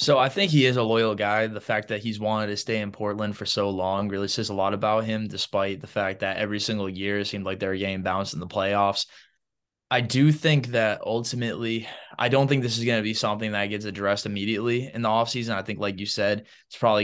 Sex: male